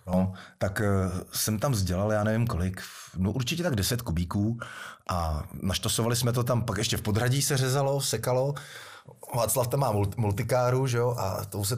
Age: 30-49